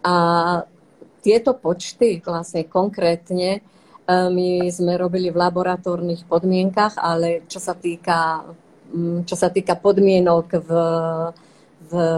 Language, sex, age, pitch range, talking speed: Slovak, female, 40-59, 170-190 Hz, 105 wpm